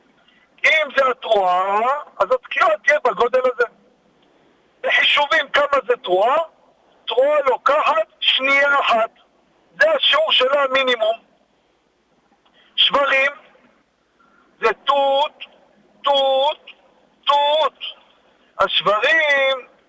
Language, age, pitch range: Hebrew, 50-69, 235-290 Hz